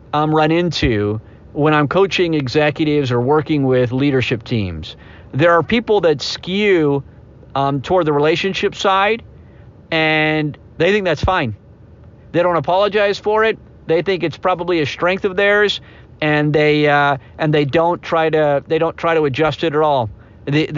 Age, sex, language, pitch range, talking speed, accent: 50-69, male, English, 130-170 Hz, 165 wpm, American